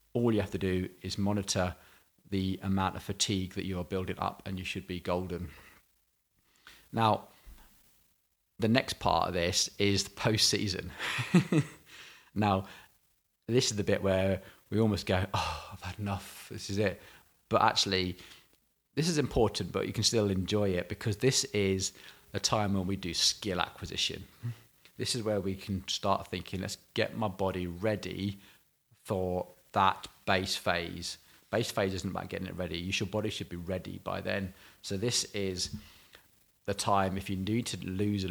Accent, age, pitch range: British, 30-49, 95-105 Hz